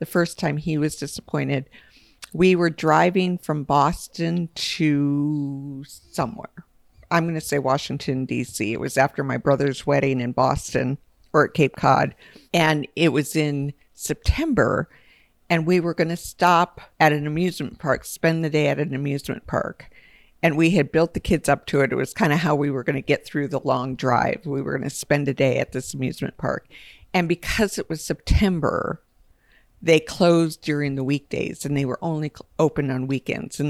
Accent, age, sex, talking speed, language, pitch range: American, 50-69, female, 180 wpm, English, 140-170 Hz